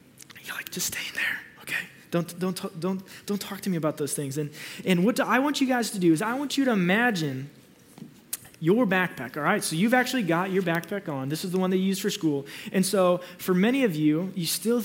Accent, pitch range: American, 165-225 Hz